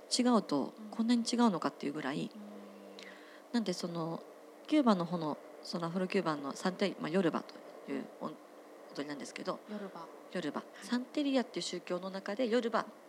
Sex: female